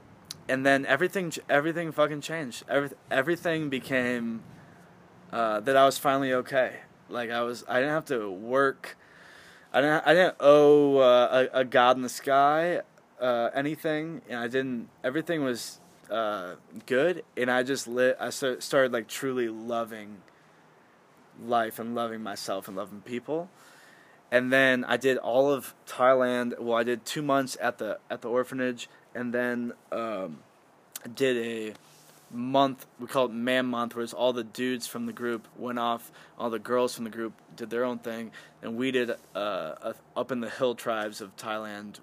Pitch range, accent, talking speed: 115-135 Hz, American, 170 wpm